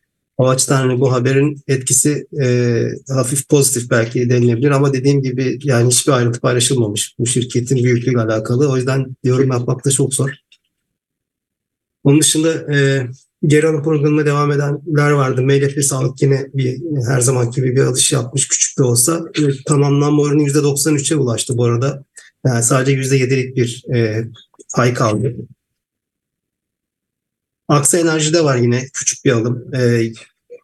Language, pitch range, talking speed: English, 125-145 Hz, 135 wpm